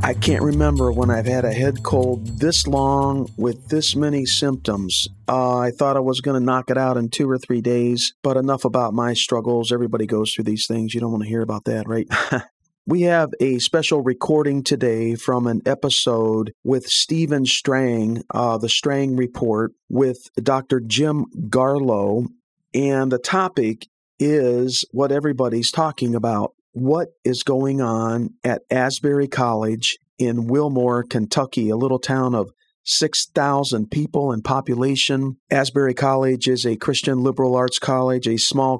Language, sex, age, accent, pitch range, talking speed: English, male, 50-69, American, 120-140 Hz, 160 wpm